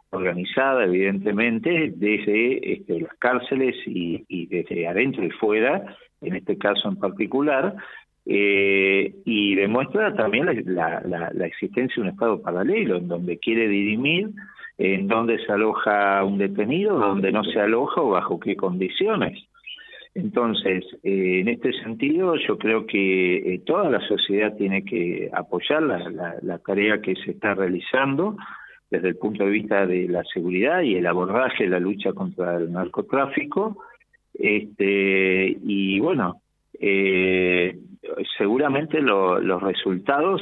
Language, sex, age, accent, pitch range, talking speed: Spanish, male, 50-69, Argentinian, 95-120 Hz, 140 wpm